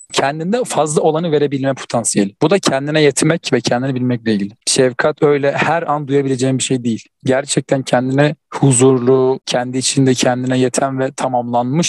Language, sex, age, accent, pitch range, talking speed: Turkish, male, 40-59, native, 125-155 Hz, 150 wpm